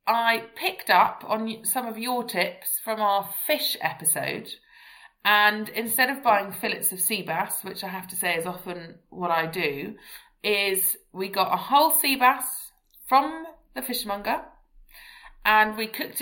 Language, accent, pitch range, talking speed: English, British, 180-230 Hz, 160 wpm